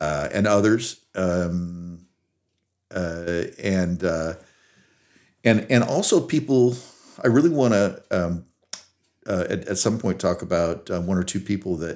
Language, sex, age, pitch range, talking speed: English, male, 50-69, 90-105 Hz, 140 wpm